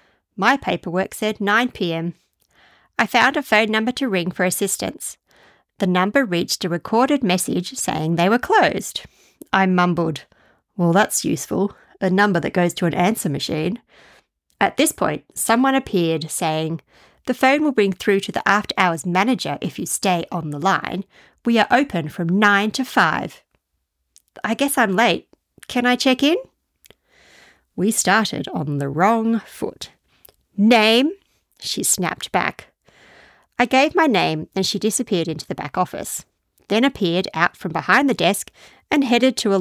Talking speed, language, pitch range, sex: 160 wpm, English, 175-240 Hz, female